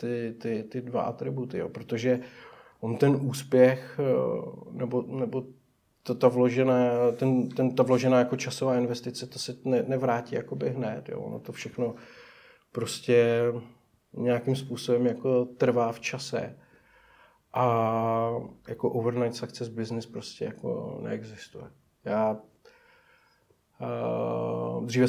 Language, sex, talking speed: Czech, male, 110 wpm